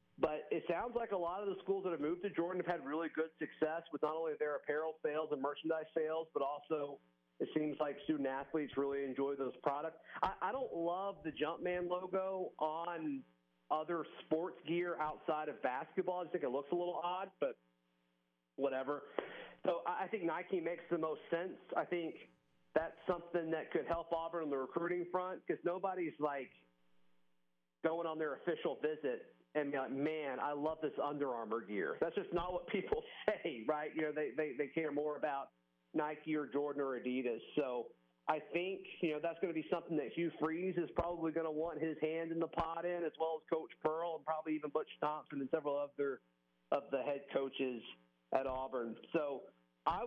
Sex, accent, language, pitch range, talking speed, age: male, American, English, 140-170 Hz, 195 wpm, 40-59